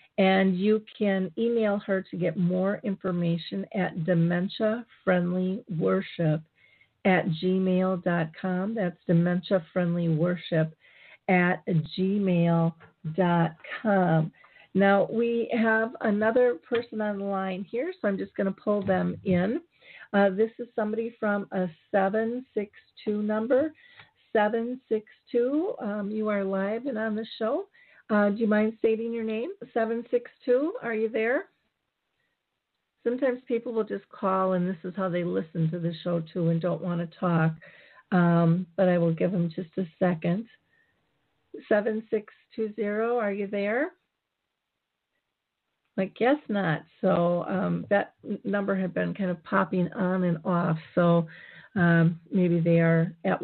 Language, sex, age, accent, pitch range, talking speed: English, female, 50-69, American, 175-220 Hz, 130 wpm